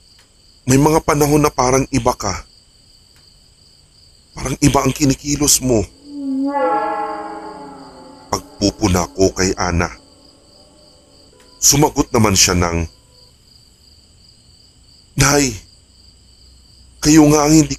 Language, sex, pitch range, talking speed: Filipino, male, 90-125 Hz, 85 wpm